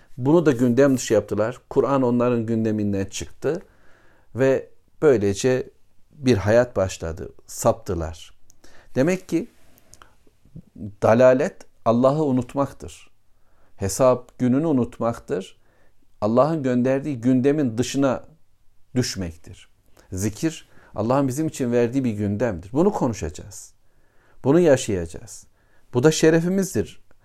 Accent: native